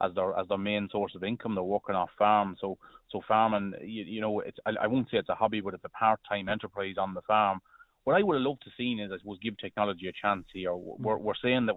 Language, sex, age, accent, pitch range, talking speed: English, male, 30-49, Irish, 100-115 Hz, 275 wpm